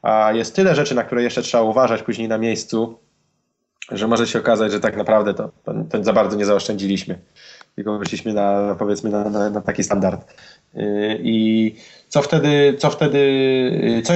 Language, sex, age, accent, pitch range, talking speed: Polish, male, 20-39, native, 110-135 Hz, 160 wpm